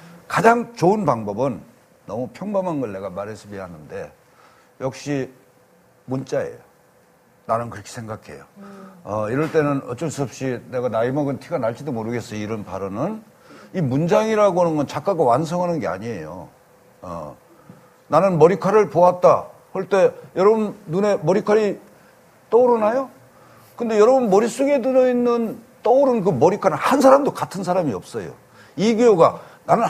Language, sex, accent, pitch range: Korean, male, native, 140-230 Hz